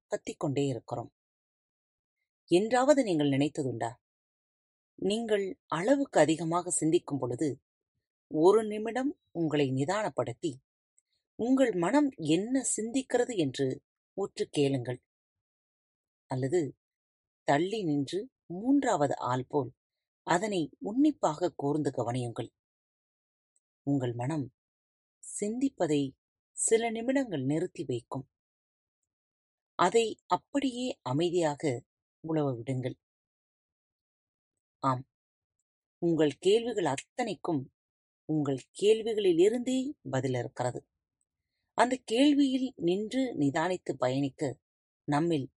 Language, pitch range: Tamil, 125-210 Hz